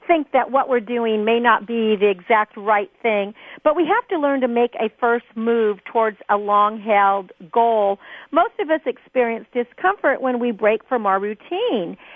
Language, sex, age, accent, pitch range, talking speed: English, female, 50-69, American, 220-290 Hz, 185 wpm